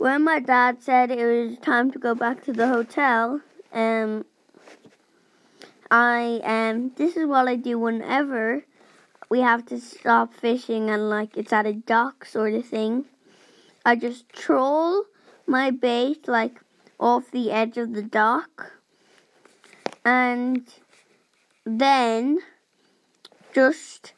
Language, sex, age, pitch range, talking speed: English, female, 20-39, 220-255 Hz, 125 wpm